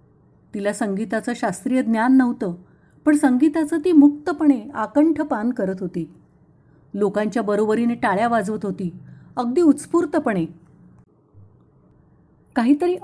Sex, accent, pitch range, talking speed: female, native, 190-280 Hz, 95 wpm